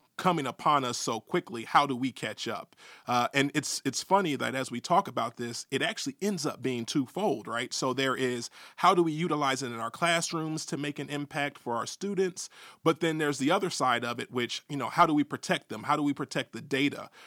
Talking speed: 235 wpm